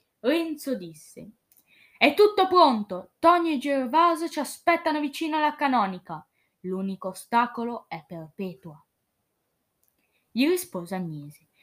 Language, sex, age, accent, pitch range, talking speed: Italian, female, 10-29, native, 190-280 Hz, 105 wpm